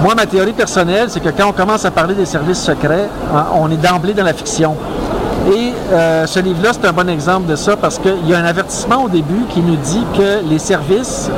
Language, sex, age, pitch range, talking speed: French, male, 60-79, 160-195 Hz, 230 wpm